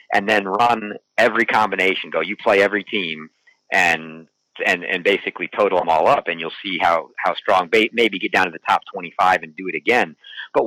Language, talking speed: English, 210 wpm